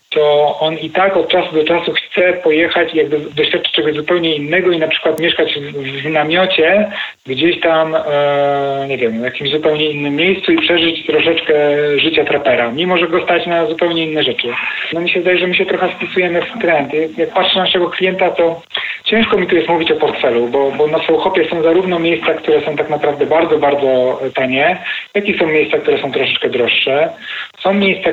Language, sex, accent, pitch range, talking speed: Polish, male, native, 140-170 Hz, 200 wpm